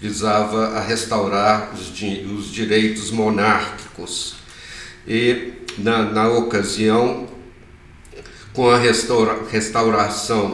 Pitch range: 105-115 Hz